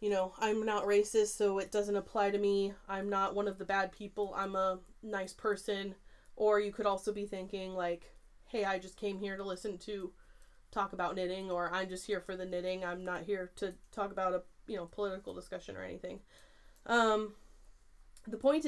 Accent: American